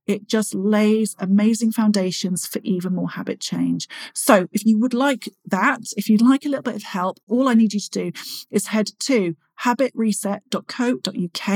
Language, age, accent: English, 40-59, British